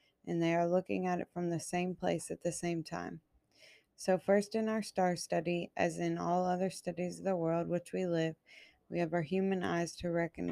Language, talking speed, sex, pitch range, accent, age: English, 215 wpm, female, 165-185 Hz, American, 20-39